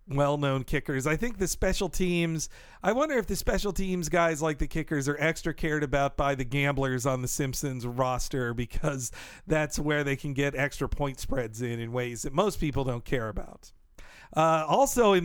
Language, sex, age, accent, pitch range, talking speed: English, male, 50-69, American, 140-190 Hz, 195 wpm